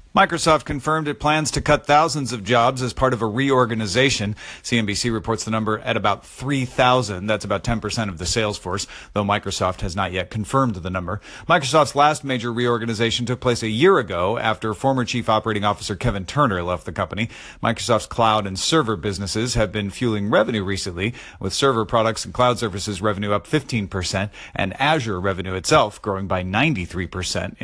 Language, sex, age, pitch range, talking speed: English, male, 40-59, 105-130 Hz, 175 wpm